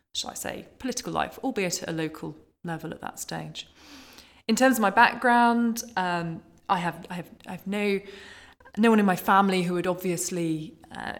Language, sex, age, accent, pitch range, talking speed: English, female, 20-39, British, 160-195 Hz, 180 wpm